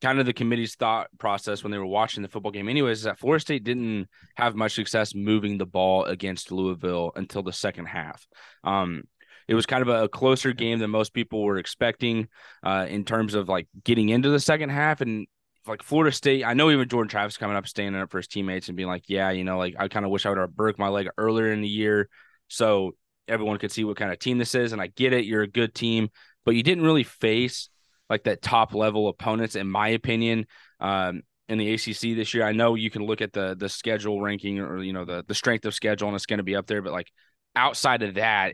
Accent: American